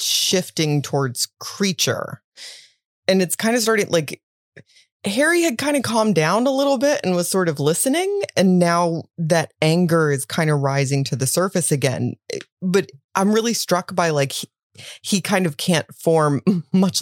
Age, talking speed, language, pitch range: 30-49, 170 wpm, English, 140-210 Hz